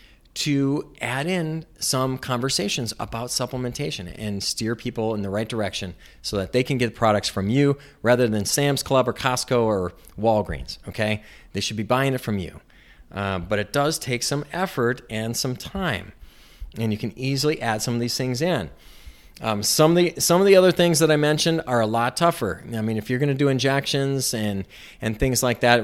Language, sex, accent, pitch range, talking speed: English, male, American, 105-135 Hz, 195 wpm